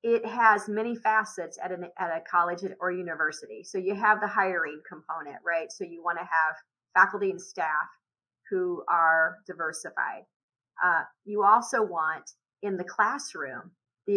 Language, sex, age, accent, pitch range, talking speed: English, female, 40-59, American, 180-220 Hz, 155 wpm